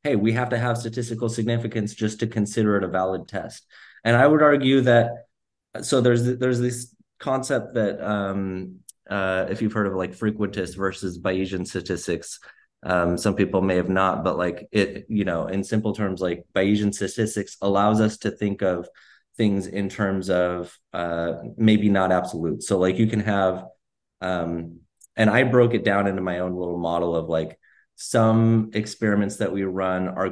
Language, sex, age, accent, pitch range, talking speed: English, male, 30-49, American, 95-115 Hz, 180 wpm